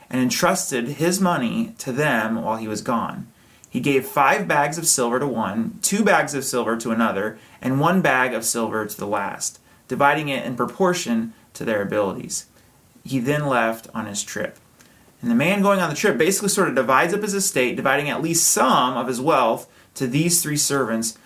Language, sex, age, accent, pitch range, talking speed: English, male, 30-49, American, 130-185 Hz, 200 wpm